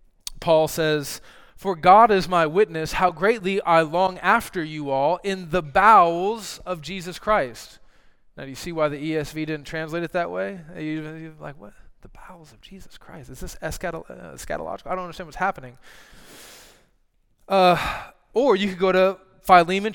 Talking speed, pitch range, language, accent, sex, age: 165 wpm, 155-195 Hz, English, American, male, 20-39